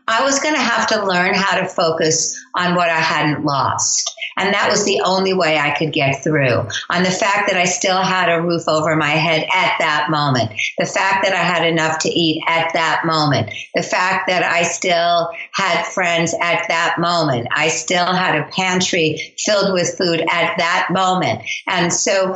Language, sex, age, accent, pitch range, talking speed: English, female, 60-79, American, 160-210 Hz, 200 wpm